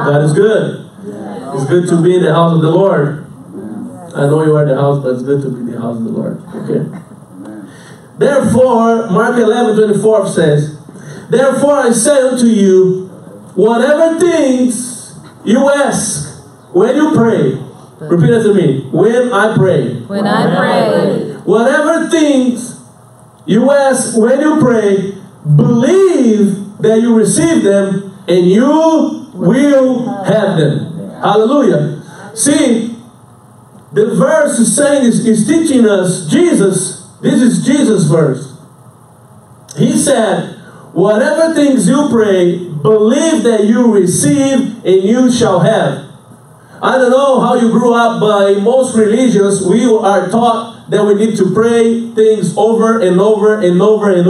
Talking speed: 145 wpm